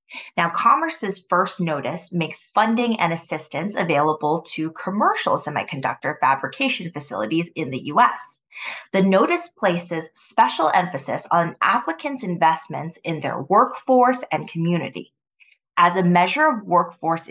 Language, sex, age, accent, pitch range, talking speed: English, female, 20-39, American, 165-200 Hz, 120 wpm